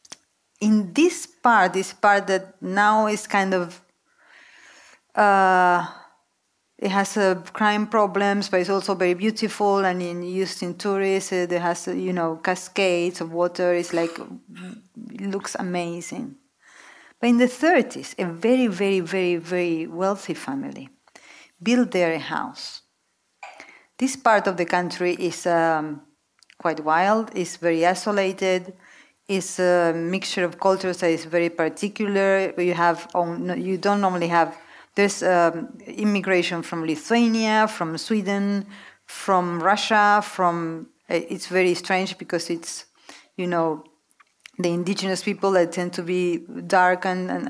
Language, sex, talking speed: English, female, 135 wpm